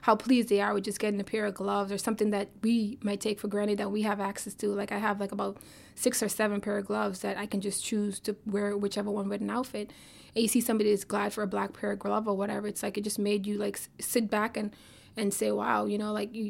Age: 20-39